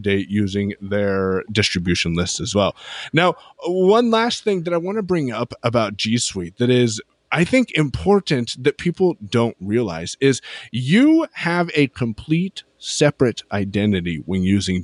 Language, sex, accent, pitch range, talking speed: English, male, American, 115-160 Hz, 155 wpm